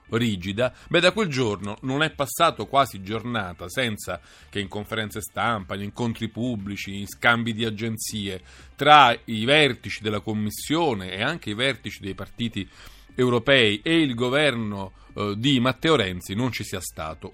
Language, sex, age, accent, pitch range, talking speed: Italian, male, 40-59, native, 105-140 Hz, 155 wpm